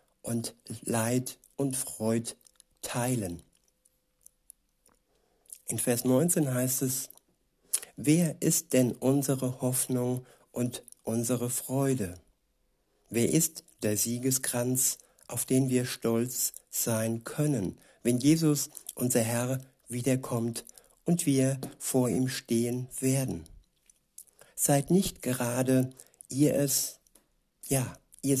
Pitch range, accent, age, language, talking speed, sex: 115-130 Hz, German, 60-79, German, 95 wpm, male